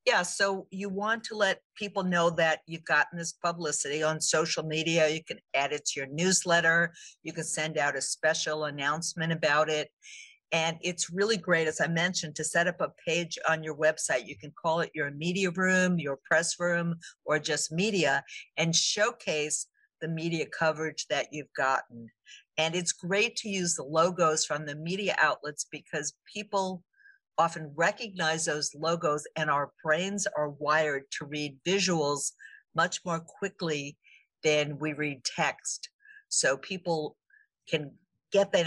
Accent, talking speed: American, 165 wpm